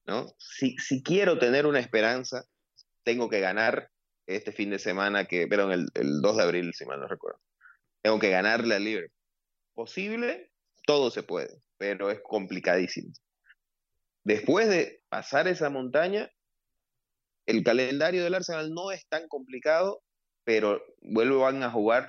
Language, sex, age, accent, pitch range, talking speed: Spanish, male, 30-49, Venezuelan, 105-155 Hz, 145 wpm